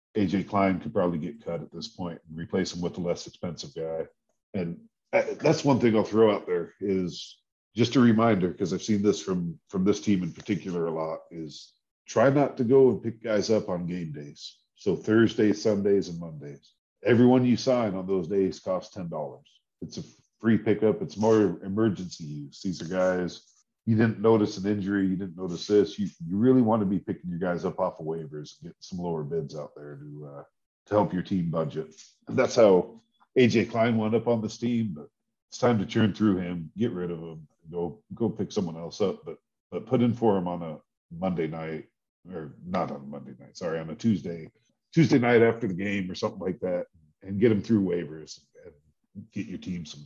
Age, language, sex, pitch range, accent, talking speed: 50-69, English, male, 85-115 Hz, American, 215 wpm